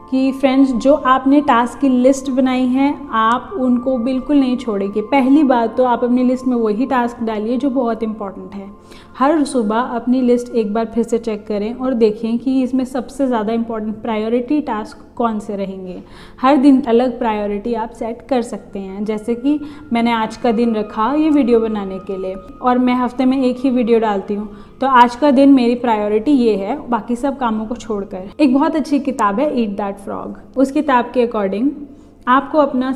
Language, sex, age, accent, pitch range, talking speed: Hindi, female, 30-49, native, 220-265 Hz, 195 wpm